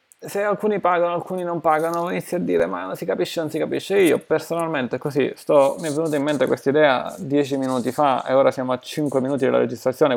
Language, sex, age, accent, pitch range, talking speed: Italian, male, 20-39, native, 125-155 Hz, 225 wpm